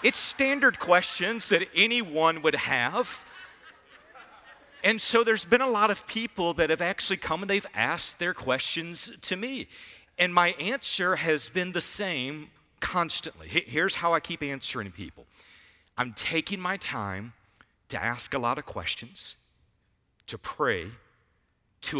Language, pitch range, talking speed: English, 130-200 Hz, 145 wpm